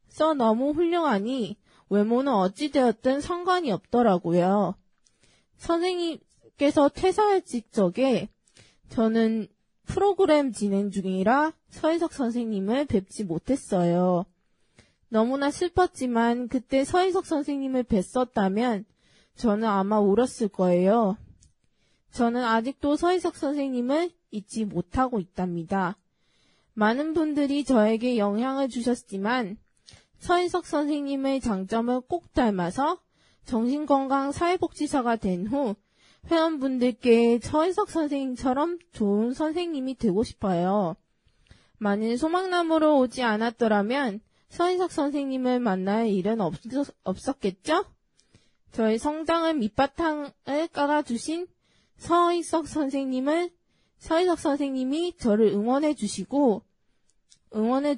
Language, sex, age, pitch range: Korean, female, 20-39, 215-305 Hz